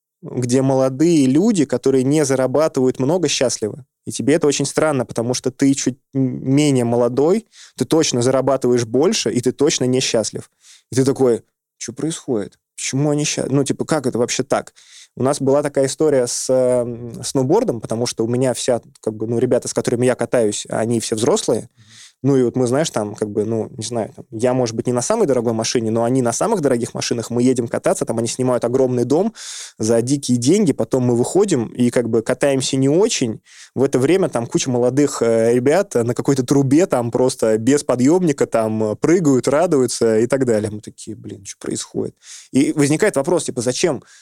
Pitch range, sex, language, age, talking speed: 115-135 Hz, male, Russian, 20-39, 190 wpm